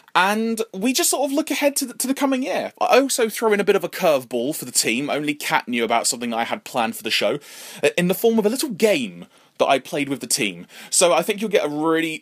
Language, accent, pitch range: English, British, 120-185 Hz